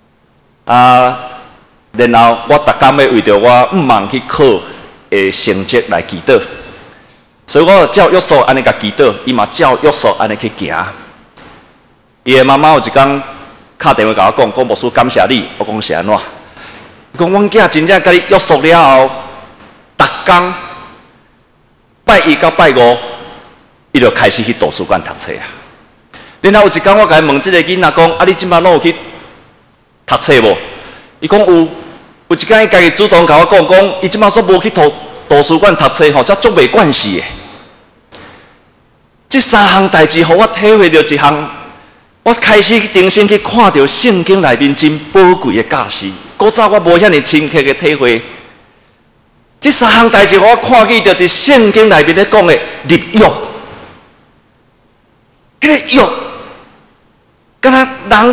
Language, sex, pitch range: Chinese, male, 135-205 Hz